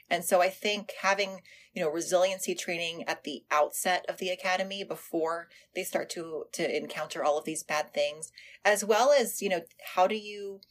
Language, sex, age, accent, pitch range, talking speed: English, female, 30-49, American, 155-195 Hz, 190 wpm